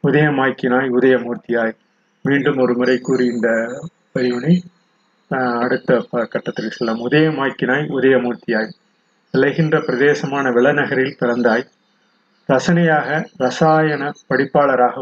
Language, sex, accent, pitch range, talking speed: Tamil, male, native, 130-155 Hz, 85 wpm